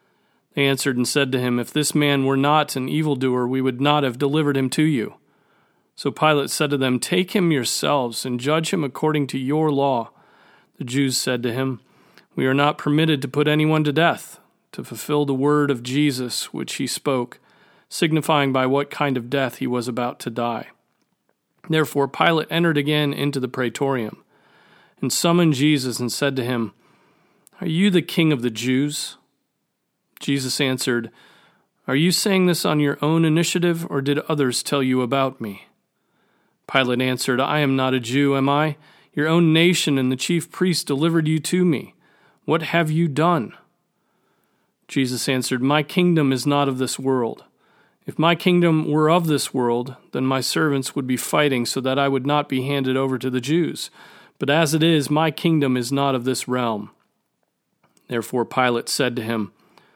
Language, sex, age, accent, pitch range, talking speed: English, male, 40-59, American, 130-155 Hz, 180 wpm